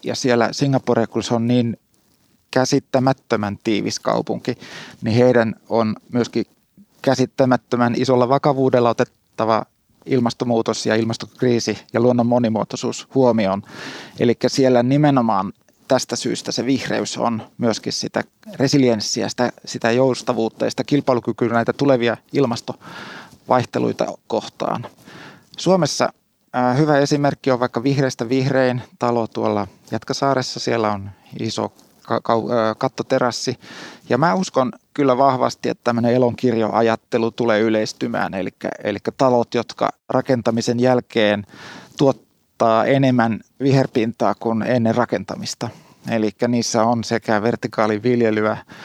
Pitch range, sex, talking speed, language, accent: 110-130 Hz, male, 105 wpm, Finnish, native